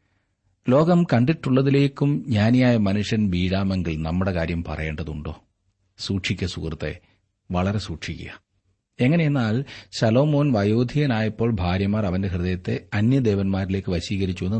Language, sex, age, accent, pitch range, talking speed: Malayalam, male, 30-49, native, 90-115 Hz, 80 wpm